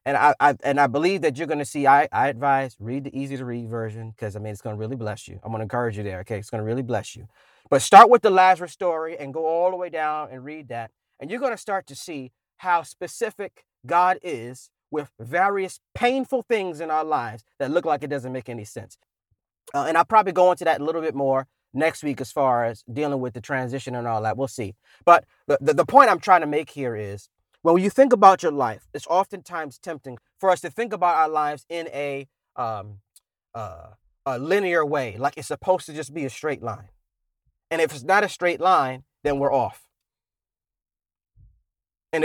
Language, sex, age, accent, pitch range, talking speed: English, male, 30-49, American, 115-170 Hz, 225 wpm